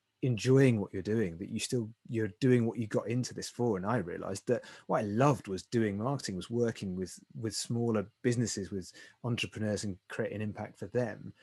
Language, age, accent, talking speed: English, 30-49, British, 200 wpm